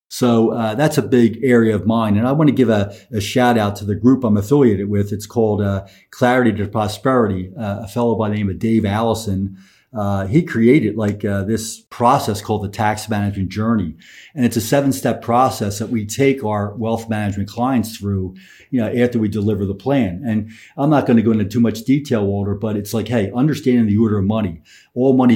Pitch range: 105-120 Hz